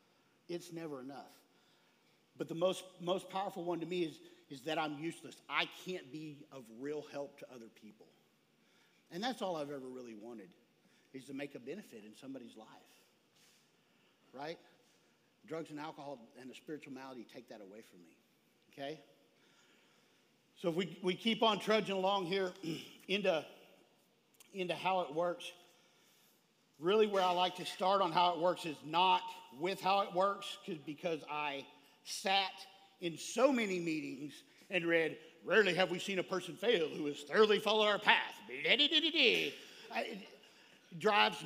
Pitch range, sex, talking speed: 150-195 Hz, male, 160 wpm